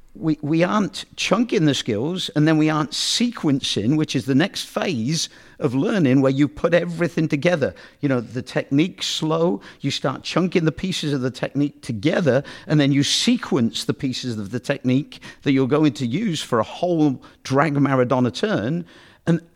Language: English